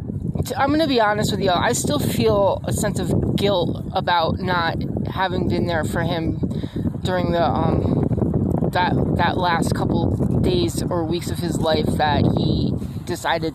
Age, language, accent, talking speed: 20-39, English, American, 160 wpm